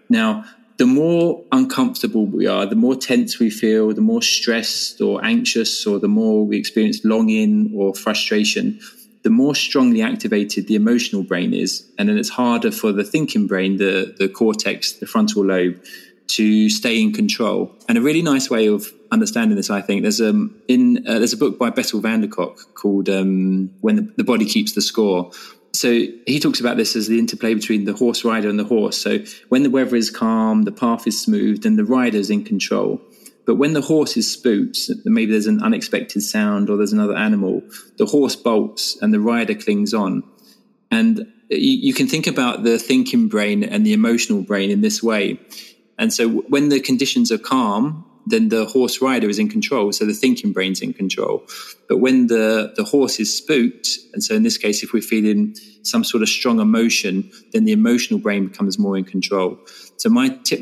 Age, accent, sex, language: 20-39, British, male, English